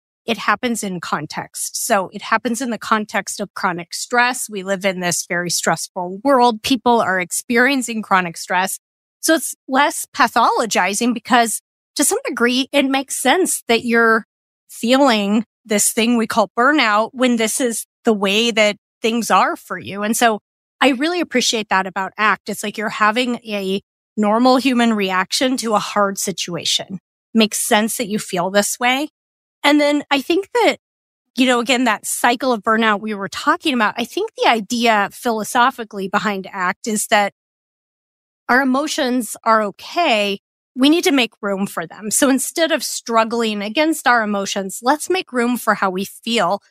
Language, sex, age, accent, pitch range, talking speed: English, female, 30-49, American, 205-260 Hz, 170 wpm